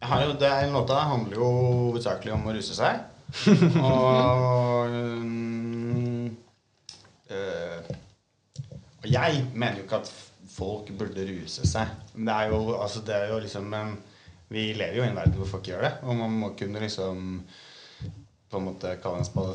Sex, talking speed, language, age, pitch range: male, 130 wpm, English, 30-49, 100-125 Hz